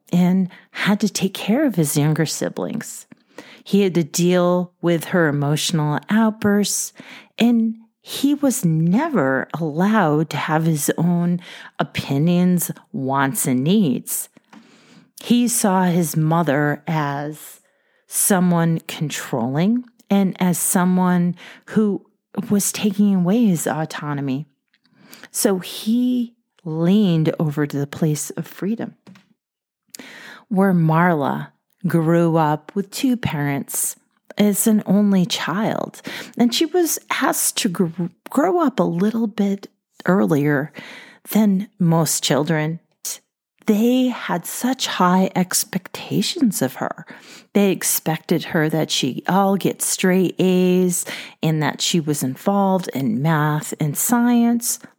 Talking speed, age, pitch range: 115 wpm, 40-59, 160-210 Hz